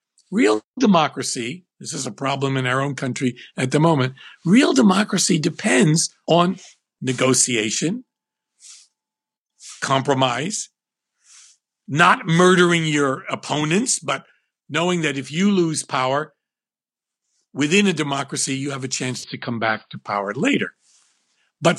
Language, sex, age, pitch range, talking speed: English, male, 50-69, 125-185 Hz, 120 wpm